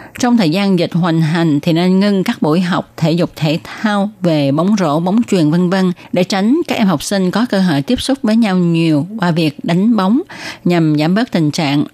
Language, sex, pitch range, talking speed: Vietnamese, female, 155-210 Hz, 230 wpm